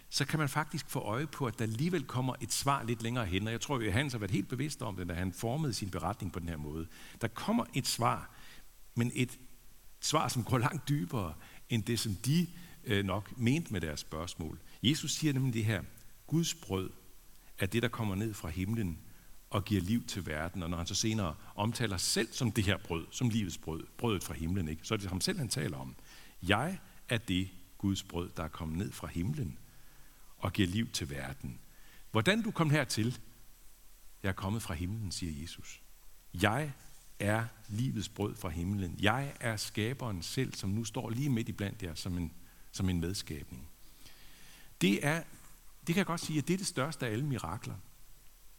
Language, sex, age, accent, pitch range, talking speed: Danish, male, 60-79, native, 95-130 Hz, 205 wpm